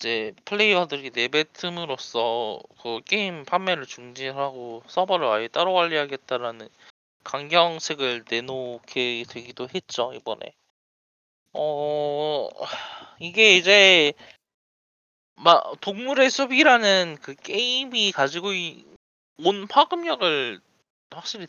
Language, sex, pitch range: Korean, male, 120-195 Hz